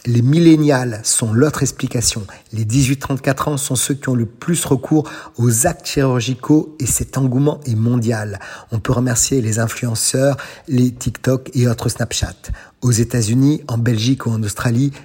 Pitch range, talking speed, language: 120-140 Hz, 160 wpm, French